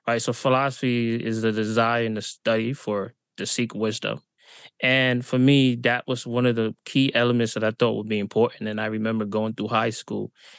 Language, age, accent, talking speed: English, 20-39, American, 205 wpm